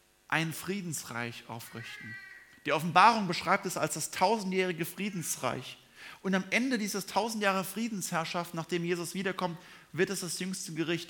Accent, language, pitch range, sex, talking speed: German, German, 145-195 Hz, male, 135 wpm